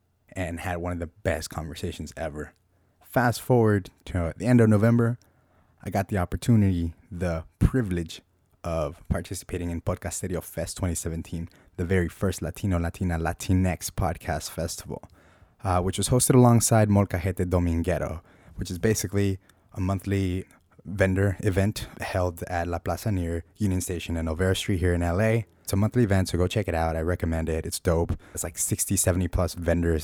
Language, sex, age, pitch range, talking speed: English, male, 20-39, 85-100 Hz, 170 wpm